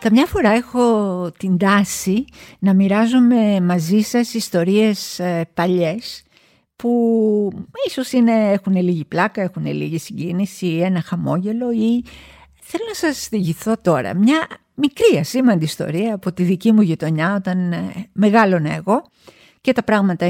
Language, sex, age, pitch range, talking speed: Greek, female, 50-69, 175-235 Hz, 125 wpm